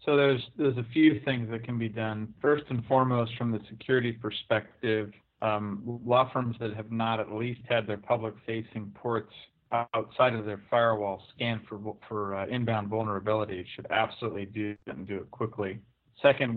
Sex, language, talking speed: male, English, 175 wpm